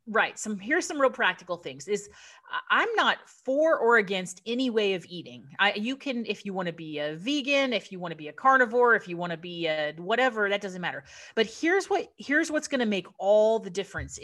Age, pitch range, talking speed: 30-49, 185-235 Hz, 230 wpm